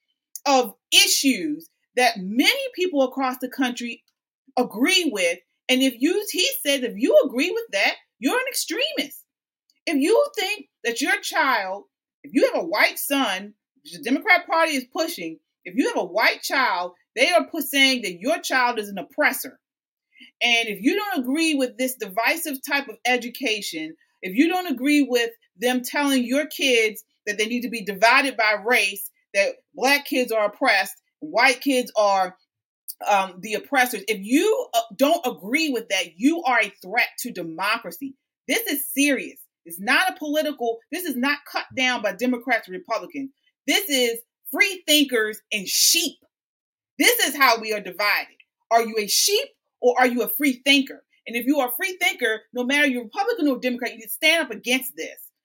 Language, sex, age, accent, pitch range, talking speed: English, female, 30-49, American, 230-305 Hz, 175 wpm